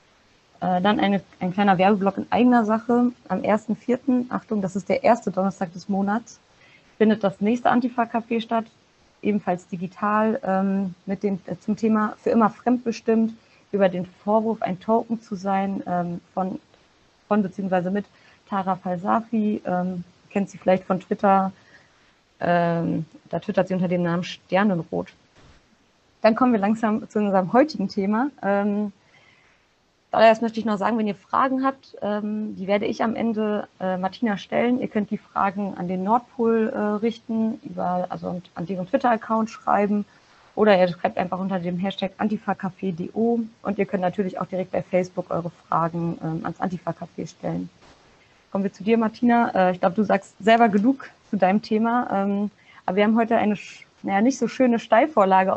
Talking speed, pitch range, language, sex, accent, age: 150 wpm, 185-225 Hz, German, female, German, 30-49